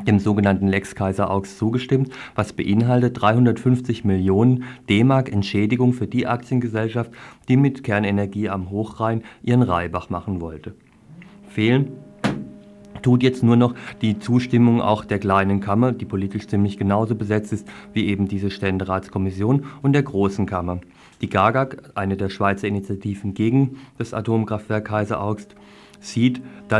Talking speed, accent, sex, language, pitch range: 130 wpm, German, male, German, 100-120 Hz